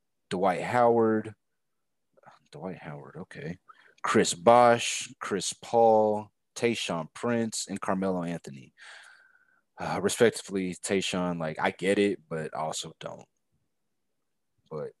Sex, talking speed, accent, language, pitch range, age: male, 100 wpm, American, English, 90-120 Hz, 30-49